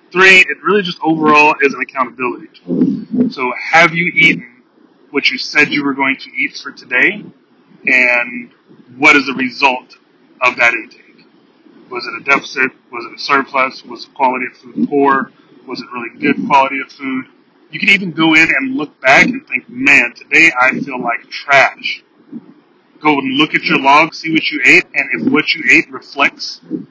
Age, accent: 30-49, American